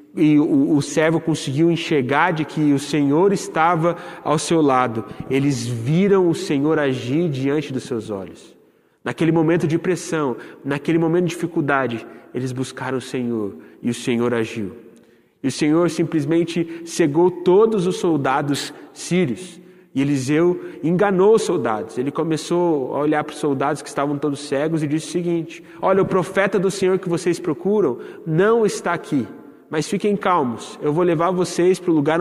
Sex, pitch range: male, 150-195 Hz